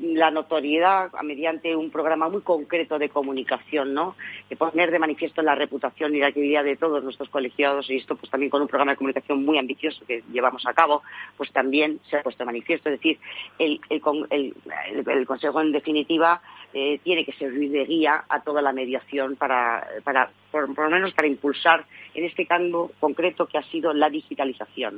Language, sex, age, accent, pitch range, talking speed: Spanish, female, 40-59, Spanish, 130-155 Hz, 195 wpm